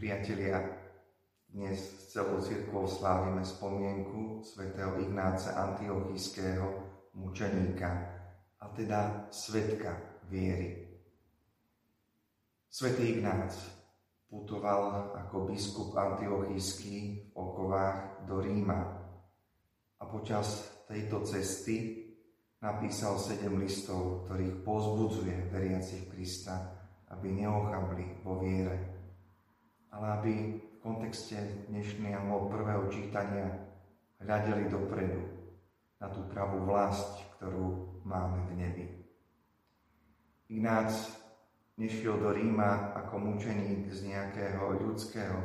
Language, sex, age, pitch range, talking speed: Slovak, male, 30-49, 95-105 Hz, 85 wpm